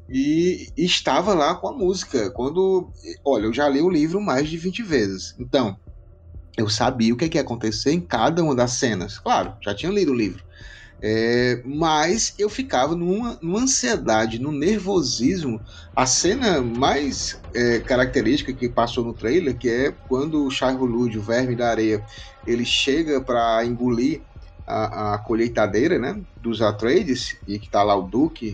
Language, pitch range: Portuguese, 110-175 Hz